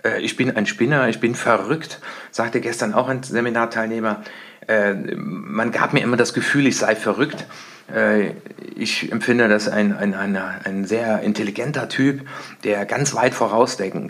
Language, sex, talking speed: German, male, 145 wpm